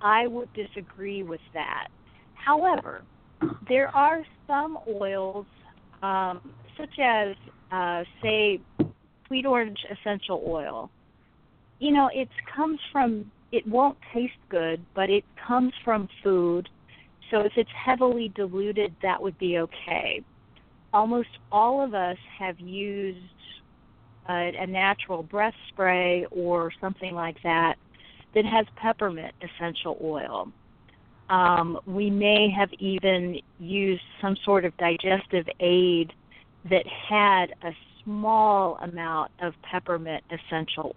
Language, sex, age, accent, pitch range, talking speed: English, female, 40-59, American, 175-225 Hz, 120 wpm